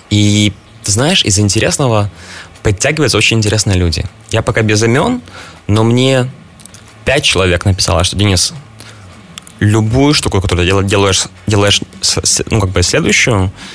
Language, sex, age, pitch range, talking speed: Russian, male, 20-39, 95-110 Hz, 125 wpm